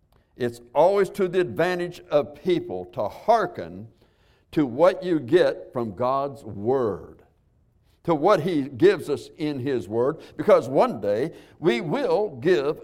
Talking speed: 140 wpm